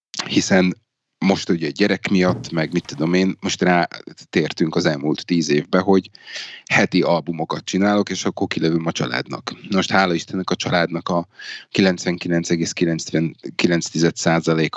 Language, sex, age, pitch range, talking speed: Hungarian, male, 30-49, 85-100 Hz, 125 wpm